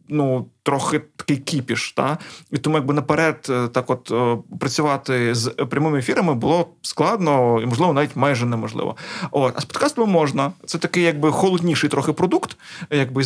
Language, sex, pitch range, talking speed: Ukrainian, male, 135-170 Hz, 155 wpm